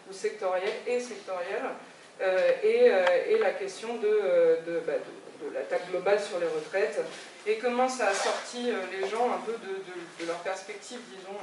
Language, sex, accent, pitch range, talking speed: French, female, French, 195-260 Hz, 190 wpm